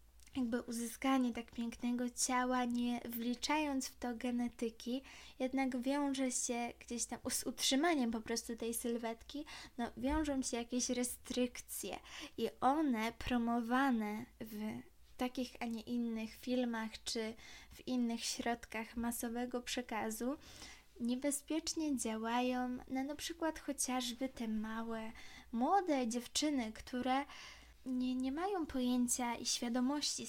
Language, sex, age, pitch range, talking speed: Polish, female, 10-29, 235-265 Hz, 115 wpm